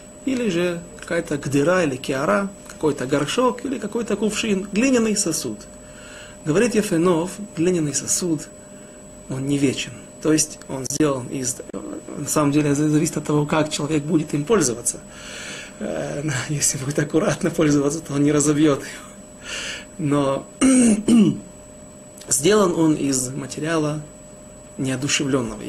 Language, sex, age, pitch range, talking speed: Russian, male, 30-49, 140-180 Hz, 120 wpm